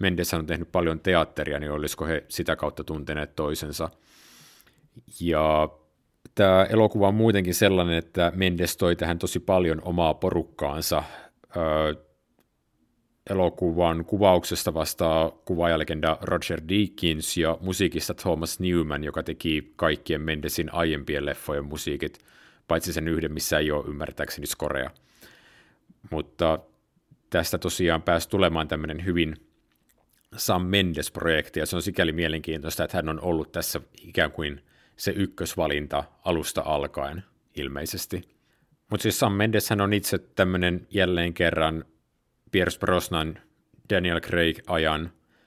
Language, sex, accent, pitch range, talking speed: Finnish, male, native, 80-90 Hz, 120 wpm